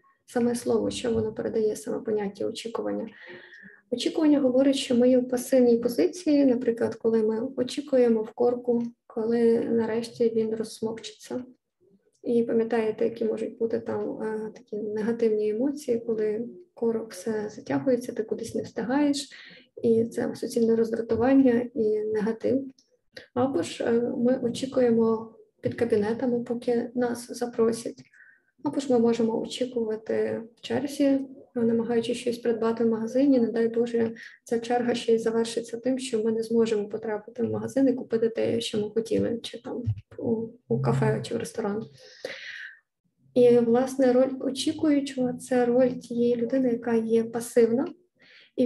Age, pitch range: 20-39, 225-250 Hz